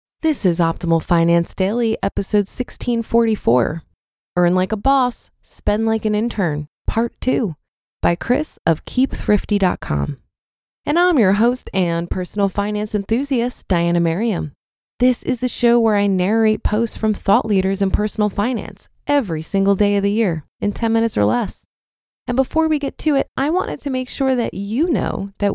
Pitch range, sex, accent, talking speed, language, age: 190-255 Hz, female, American, 165 wpm, English, 20-39